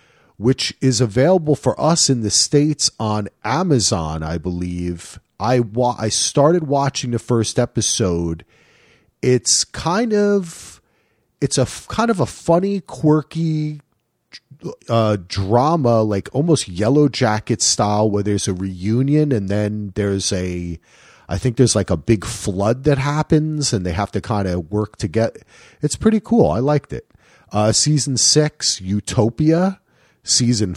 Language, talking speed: English, 145 wpm